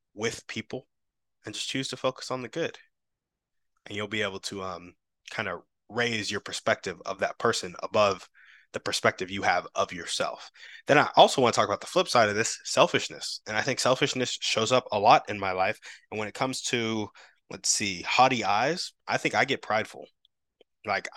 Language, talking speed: English, 195 wpm